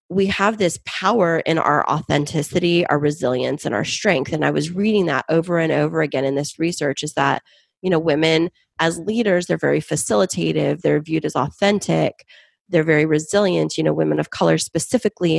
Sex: female